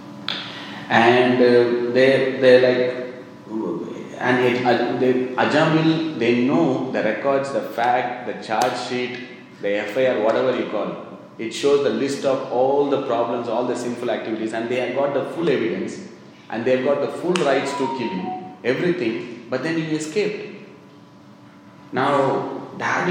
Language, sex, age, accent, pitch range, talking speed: English, male, 30-49, Indian, 110-135 Hz, 155 wpm